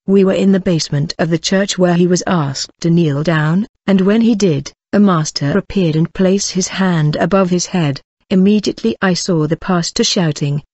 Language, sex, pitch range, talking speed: English, female, 160-190 Hz, 195 wpm